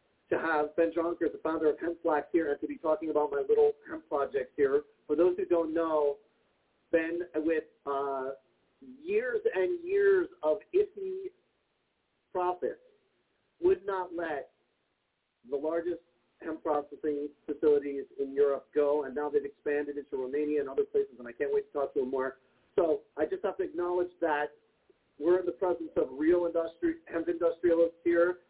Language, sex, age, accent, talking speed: English, male, 40-59, American, 165 wpm